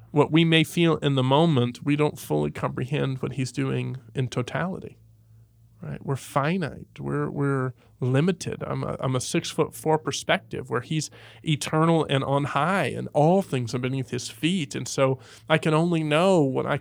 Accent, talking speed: American, 180 wpm